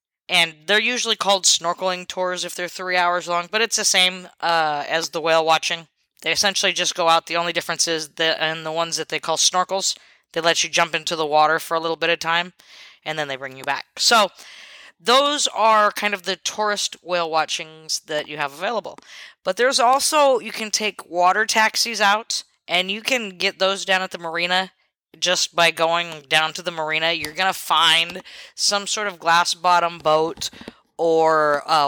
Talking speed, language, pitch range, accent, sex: 200 wpm, English, 165-205 Hz, American, female